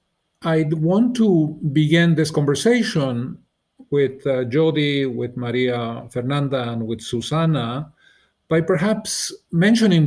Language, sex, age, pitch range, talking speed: English, male, 50-69, 120-150 Hz, 115 wpm